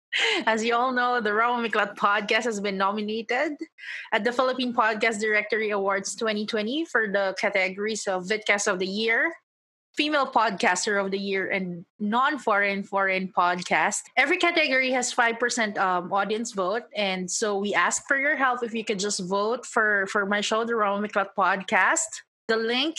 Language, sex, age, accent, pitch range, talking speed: English, female, 20-39, Filipino, 200-245 Hz, 160 wpm